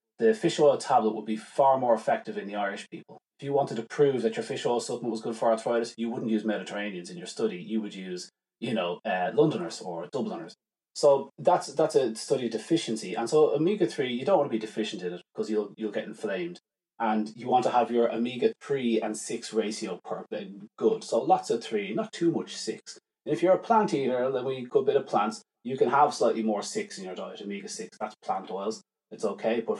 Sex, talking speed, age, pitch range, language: male, 230 wpm, 30-49, 110-145 Hz, English